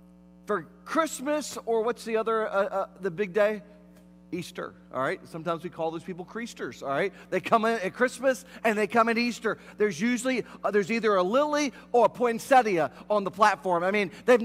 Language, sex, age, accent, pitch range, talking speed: English, male, 40-59, American, 200-260 Hz, 200 wpm